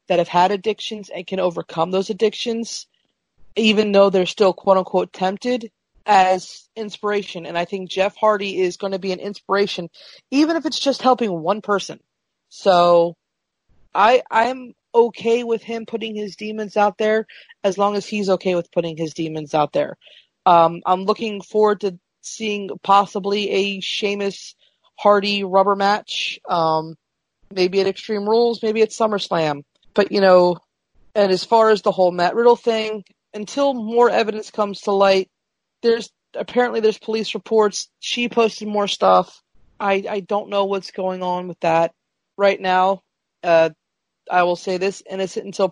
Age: 30-49